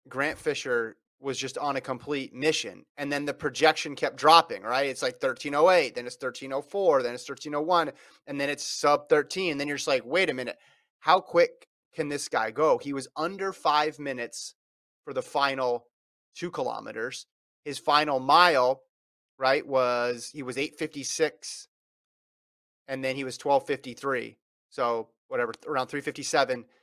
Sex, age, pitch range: male, 30-49, 130-155 Hz